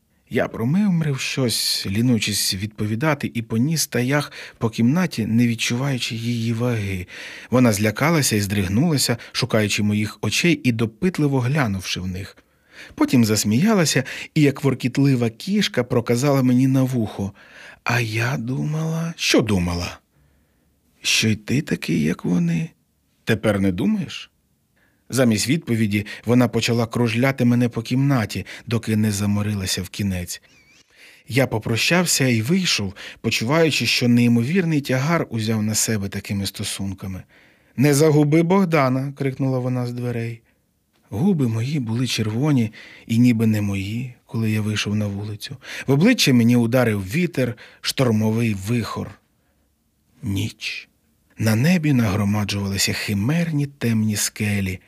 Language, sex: Ukrainian, male